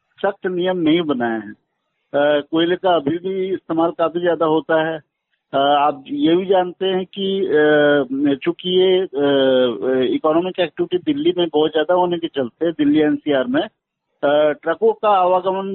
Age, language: 50-69, Hindi